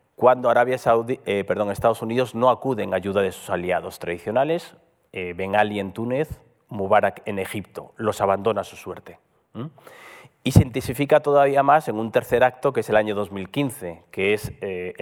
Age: 40-59